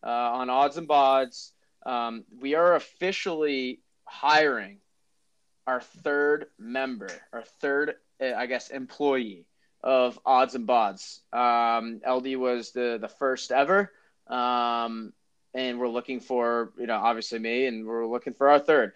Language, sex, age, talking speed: English, male, 20-39, 140 wpm